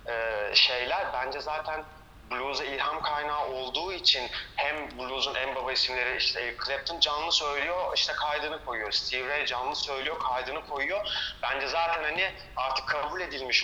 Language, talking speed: Turkish, 135 wpm